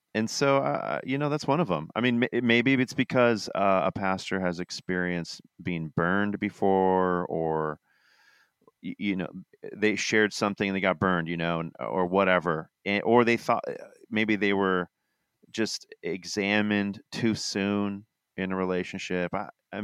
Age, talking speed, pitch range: 30-49, 155 wpm, 90-105 Hz